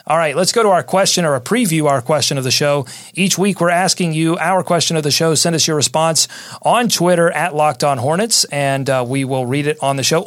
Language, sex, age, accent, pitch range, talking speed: English, male, 40-59, American, 140-170 Hz, 255 wpm